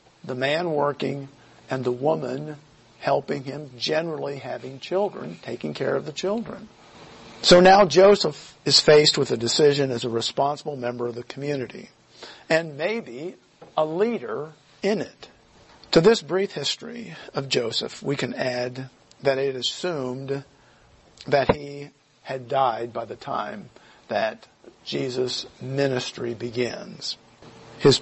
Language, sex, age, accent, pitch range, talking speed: English, male, 50-69, American, 120-150 Hz, 130 wpm